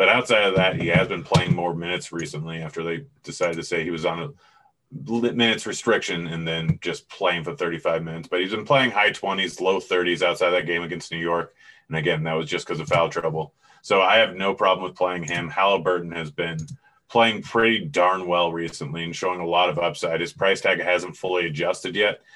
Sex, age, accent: male, 30-49, American